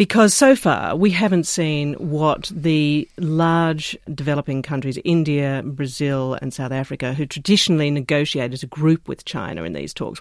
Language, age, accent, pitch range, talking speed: English, 40-59, Australian, 135-160 Hz, 160 wpm